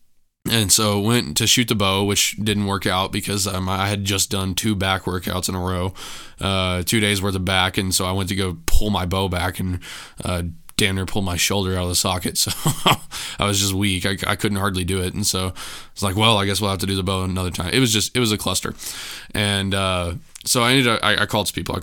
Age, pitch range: 20-39, 90-105 Hz